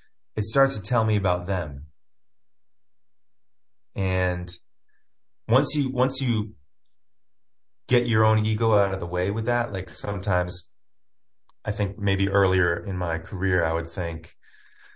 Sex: male